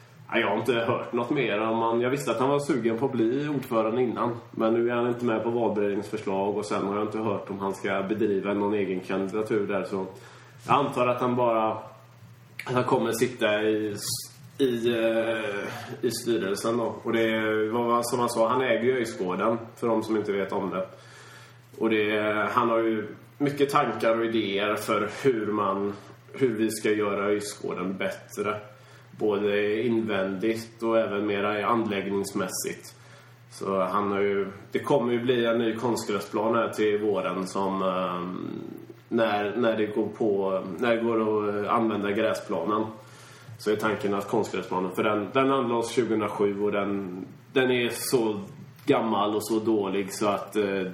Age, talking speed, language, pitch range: 20-39, 170 wpm, Swedish, 100-120 Hz